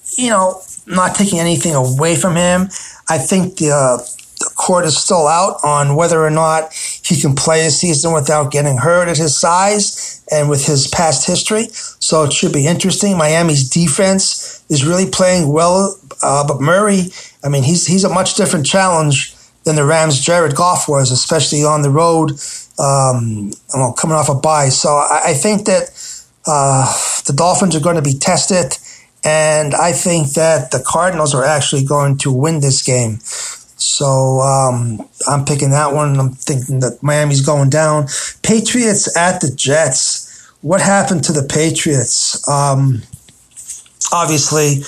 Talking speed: 165 wpm